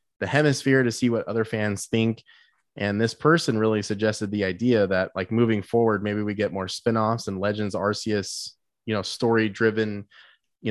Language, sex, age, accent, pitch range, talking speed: English, male, 20-39, American, 100-115 Hz, 180 wpm